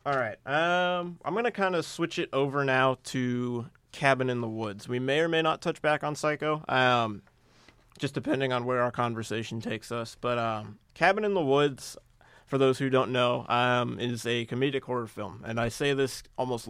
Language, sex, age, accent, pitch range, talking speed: English, male, 20-39, American, 120-135 Hz, 205 wpm